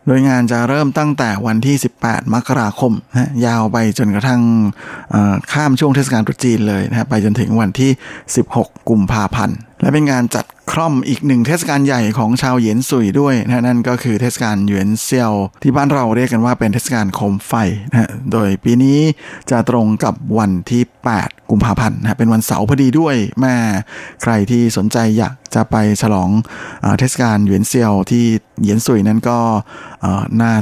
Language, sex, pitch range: Thai, male, 110-130 Hz